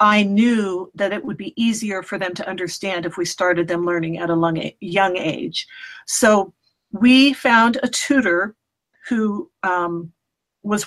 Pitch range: 185-220 Hz